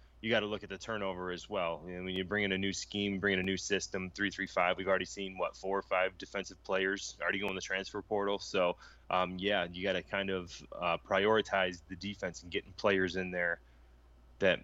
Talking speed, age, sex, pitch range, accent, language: 235 wpm, 20-39, male, 85-100 Hz, American, English